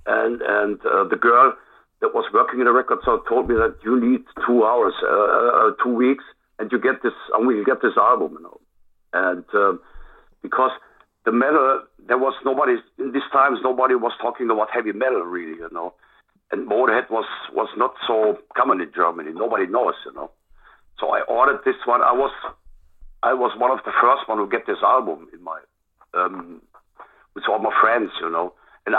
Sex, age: male, 60-79